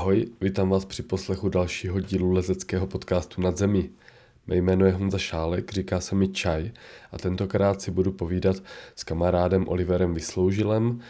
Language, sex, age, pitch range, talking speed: Czech, male, 20-39, 90-100 Hz, 155 wpm